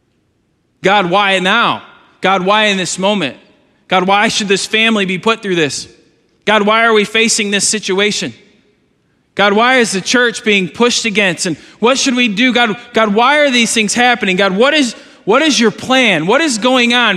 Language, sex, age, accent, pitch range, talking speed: English, male, 20-39, American, 175-235 Hz, 190 wpm